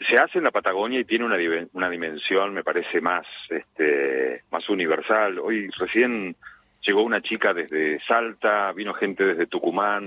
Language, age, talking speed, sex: Spanish, 40-59, 165 wpm, male